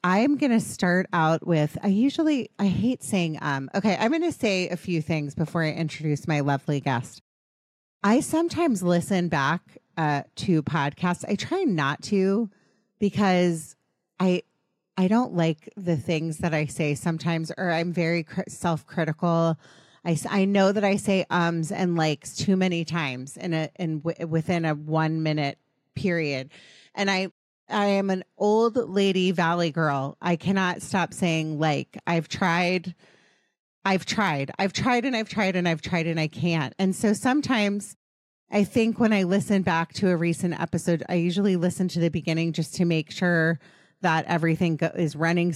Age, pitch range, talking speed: 30-49, 160-195 Hz, 170 wpm